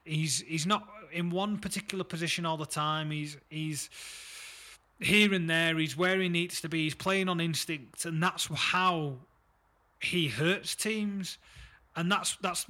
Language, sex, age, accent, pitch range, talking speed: English, male, 30-49, British, 155-180 Hz, 160 wpm